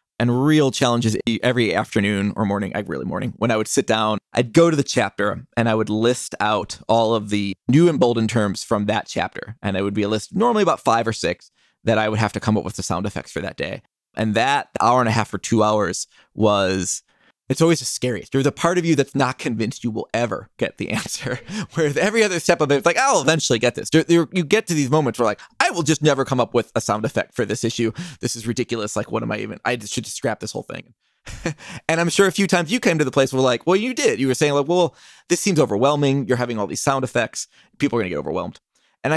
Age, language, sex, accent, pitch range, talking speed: 20-39, English, male, American, 110-160 Hz, 260 wpm